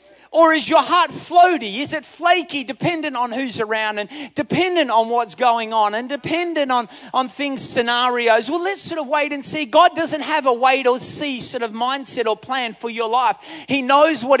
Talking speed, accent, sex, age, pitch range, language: 205 wpm, Australian, male, 30-49, 235-295 Hz, English